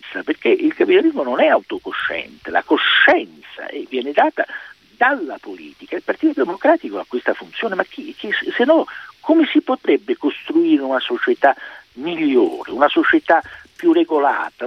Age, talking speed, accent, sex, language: 60-79, 130 wpm, native, male, Italian